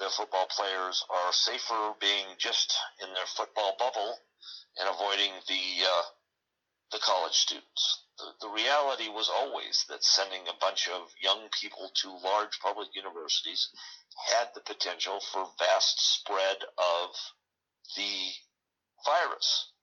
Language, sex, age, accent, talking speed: English, male, 50-69, American, 130 wpm